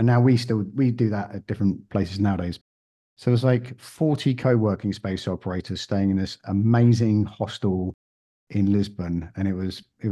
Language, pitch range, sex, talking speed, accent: English, 100-125 Hz, male, 180 wpm, British